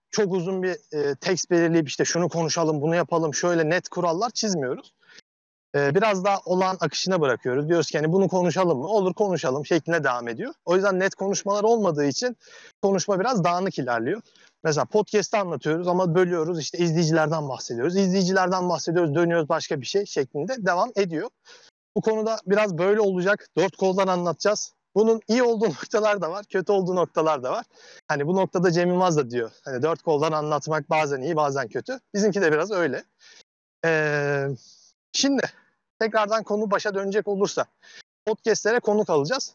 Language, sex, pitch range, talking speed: Turkish, male, 160-205 Hz, 160 wpm